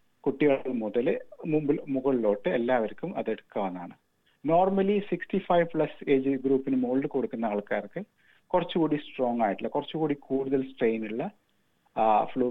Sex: male